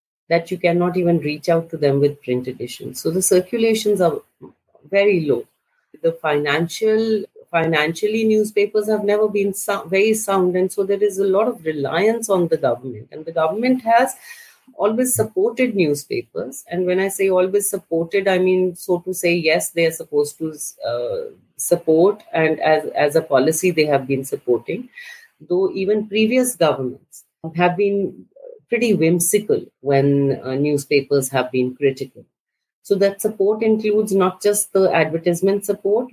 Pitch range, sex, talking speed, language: 150-205 Hz, female, 160 wpm, English